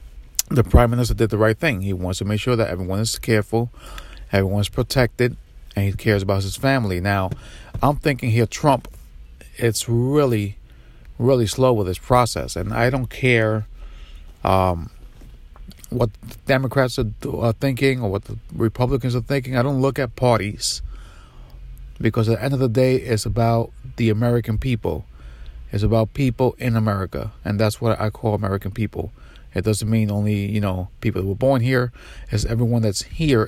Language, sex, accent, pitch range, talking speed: English, male, American, 95-120 Hz, 170 wpm